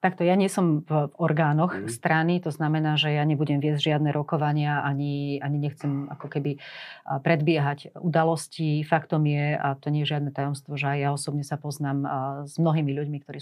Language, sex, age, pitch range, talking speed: Slovak, female, 30-49, 145-160 Hz, 185 wpm